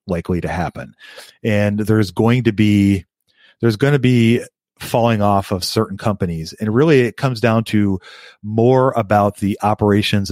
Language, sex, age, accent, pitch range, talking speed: English, male, 40-59, American, 100-115 Hz, 155 wpm